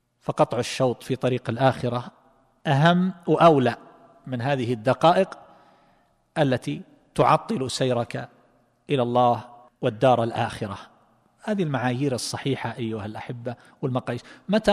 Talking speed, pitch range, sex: 100 wpm, 125-165 Hz, male